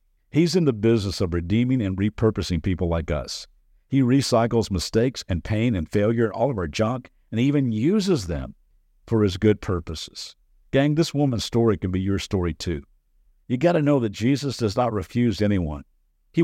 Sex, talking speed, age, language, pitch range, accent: male, 185 wpm, 50-69, English, 95-140 Hz, American